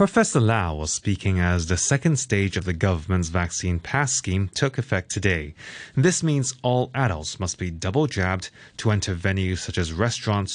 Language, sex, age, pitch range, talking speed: English, male, 20-39, 95-130 Hz, 170 wpm